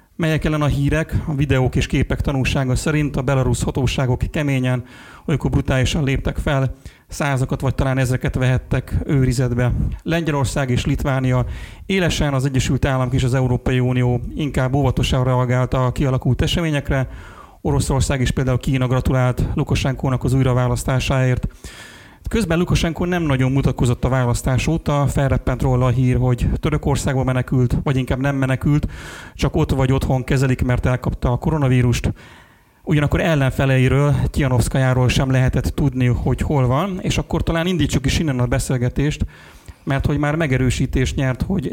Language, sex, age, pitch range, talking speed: Hungarian, male, 40-59, 125-145 Hz, 145 wpm